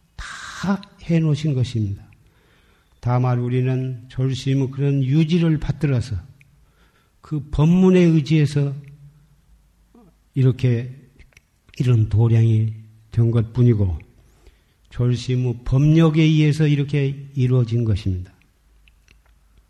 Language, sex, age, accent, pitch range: Korean, male, 50-69, native, 110-140 Hz